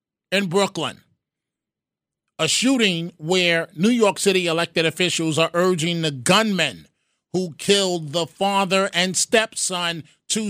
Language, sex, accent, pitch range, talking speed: English, male, American, 165-205 Hz, 120 wpm